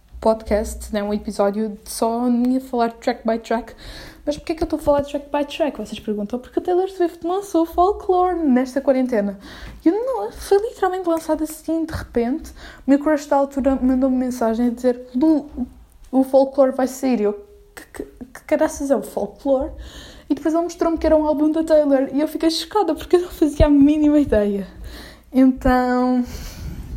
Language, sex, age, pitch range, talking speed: Portuguese, female, 10-29, 240-315 Hz, 195 wpm